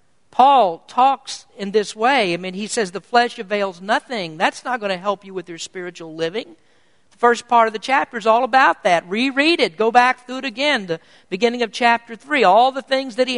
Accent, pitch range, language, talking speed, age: American, 200-270 Hz, English, 225 wpm, 50-69